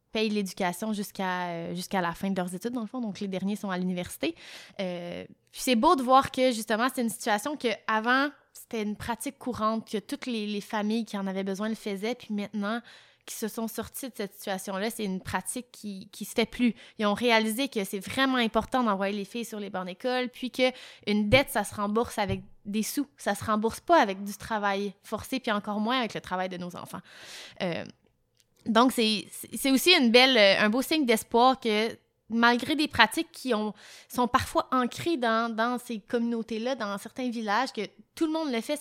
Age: 20-39